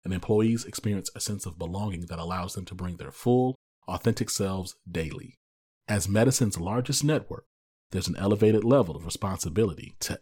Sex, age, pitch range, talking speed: male, 40-59, 90-120 Hz, 165 wpm